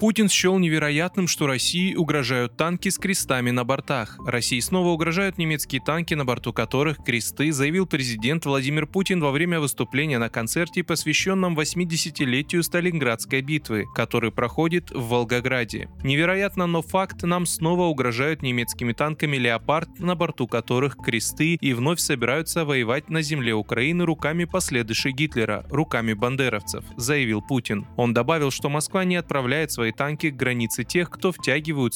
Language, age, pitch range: Russian, 20-39, 120-165 Hz